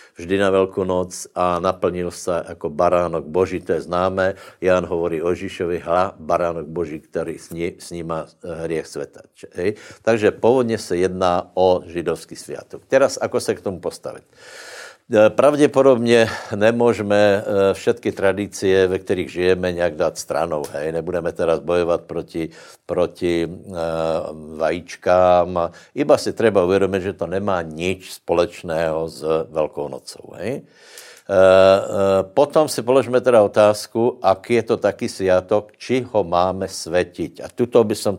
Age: 60-79